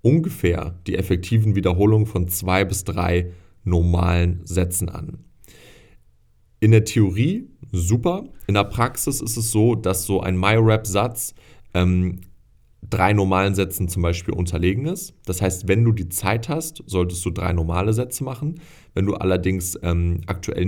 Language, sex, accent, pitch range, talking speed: German, male, German, 90-110 Hz, 150 wpm